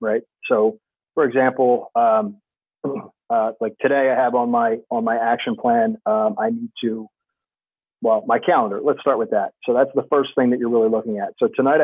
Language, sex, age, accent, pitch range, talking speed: English, male, 40-59, American, 115-160 Hz, 200 wpm